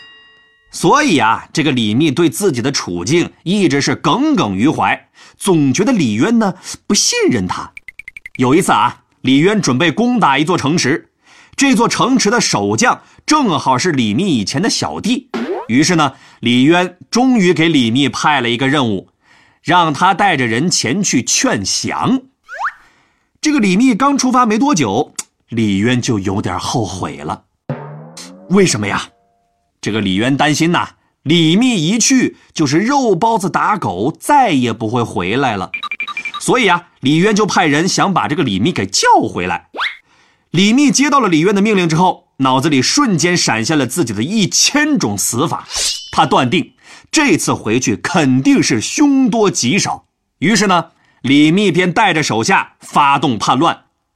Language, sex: Chinese, male